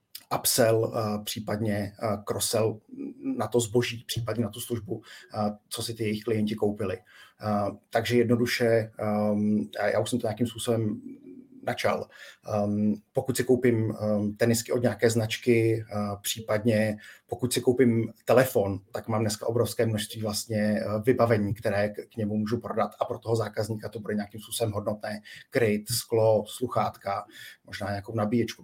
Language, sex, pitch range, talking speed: Czech, male, 105-120 Hz, 135 wpm